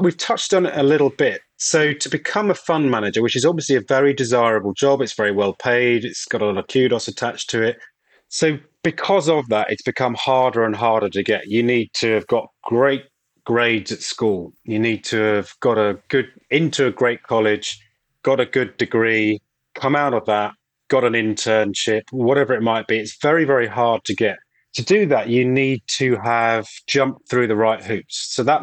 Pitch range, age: 110-140 Hz, 30-49